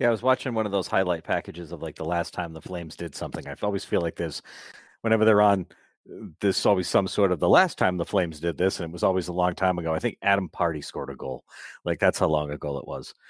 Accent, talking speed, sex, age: American, 270 wpm, male, 40-59